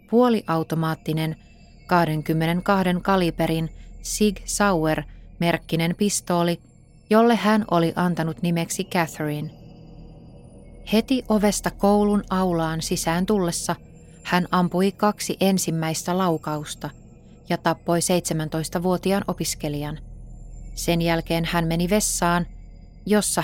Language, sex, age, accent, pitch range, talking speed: Finnish, female, 20-39, native, 160-195 Hz, 85 wpm